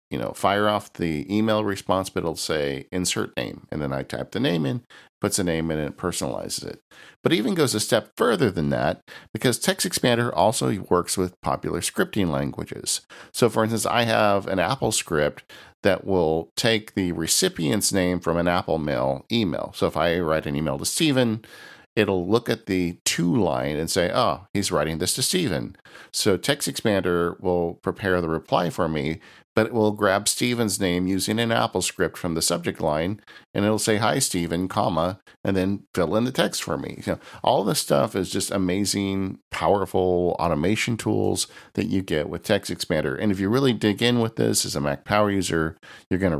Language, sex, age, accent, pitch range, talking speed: English, male, 50-69, American, 85-105 Hz, 200 wpm